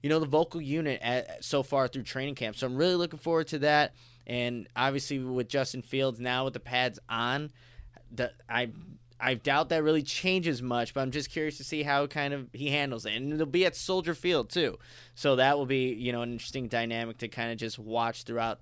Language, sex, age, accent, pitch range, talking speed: English, male, 20-39, American, 120-155 Hz, 225 wpm